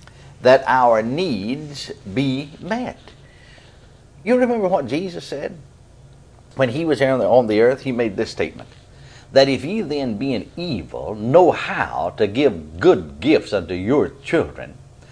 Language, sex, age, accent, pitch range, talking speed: English, male, 60-79, American, 115-140 Hz, 145 wpm